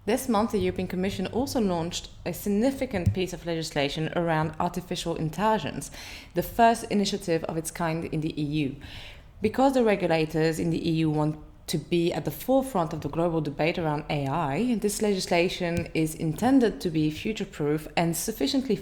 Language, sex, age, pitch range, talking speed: English, female, 30-49, 155-205 Hz, 165 wpm